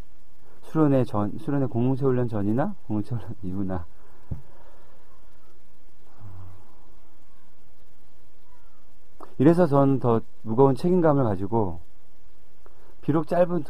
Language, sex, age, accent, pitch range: Korean, male, 40-59, native, 105-135 Hz